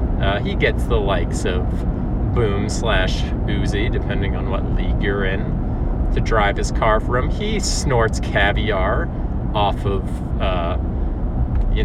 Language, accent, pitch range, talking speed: English, American, 80-110 Hz, 135 wpm